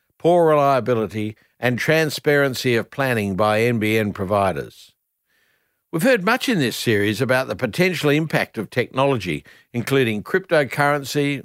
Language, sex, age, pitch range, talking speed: English, male, 60-79, 115-160 Hz, 120 wpm